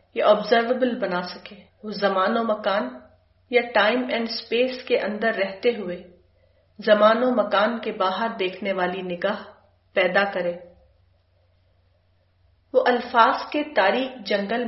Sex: female